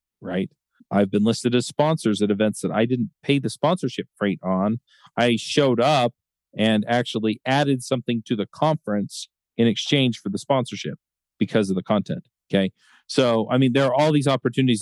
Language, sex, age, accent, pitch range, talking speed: English, male, 40-59, American, 110-135 Hz, 180 wpm